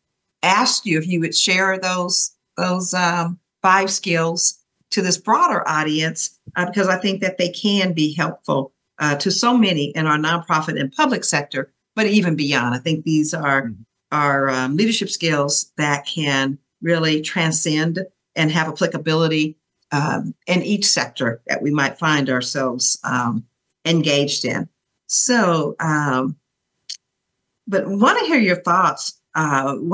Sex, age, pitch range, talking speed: female, 50-69, 150-195 Hz, 145 wpm